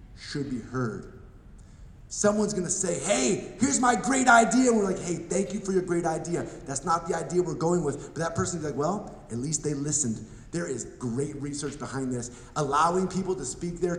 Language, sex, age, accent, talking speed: English, male, 30-49, American, 200 wpm